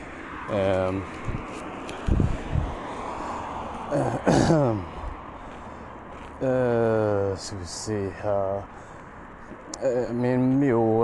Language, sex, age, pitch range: Swedish, male, 30-49, 95-115 Hz